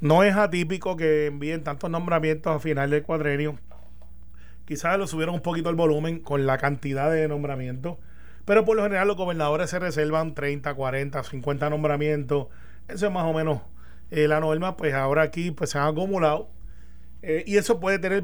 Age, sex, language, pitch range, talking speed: 30-49, male, Spanish, 140-170 Hz, 180 wpm